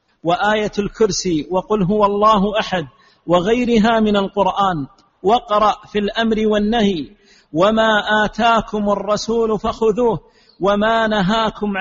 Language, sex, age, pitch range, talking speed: Arabic, male, 50-69, 200-225 Hz, 95 wpm